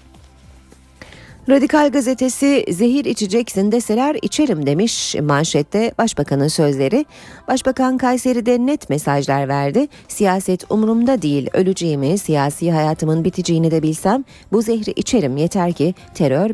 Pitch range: 150-240 Hz